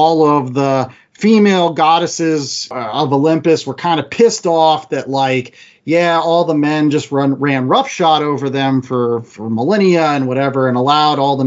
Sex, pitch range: male, 135-165 Hz